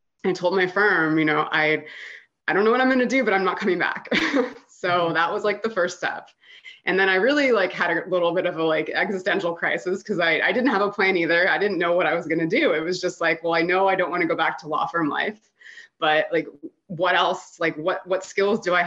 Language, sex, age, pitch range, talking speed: English, female, 20-39, 170-220 Hz, 270 wpm